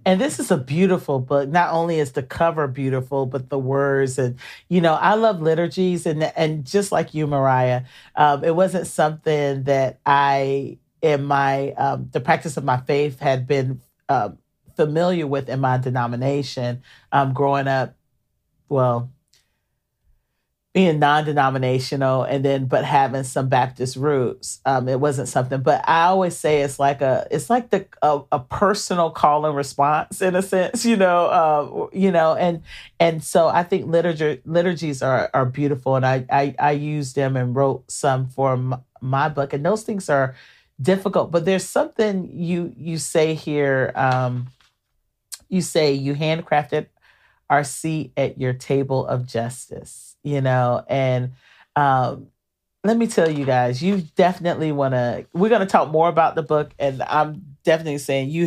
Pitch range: 130-160 Hz